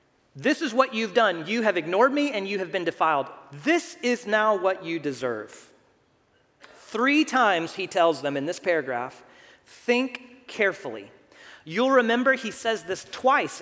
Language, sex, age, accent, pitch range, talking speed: English, male, 40-59, American, 230-310 Hz, 160 wpm